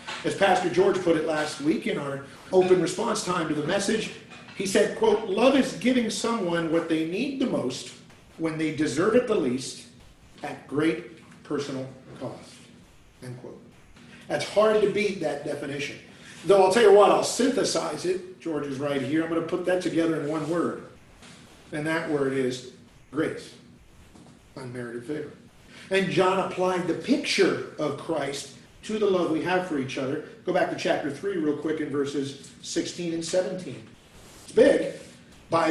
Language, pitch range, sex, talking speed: English, 145-210 Hz, male, 175 wpm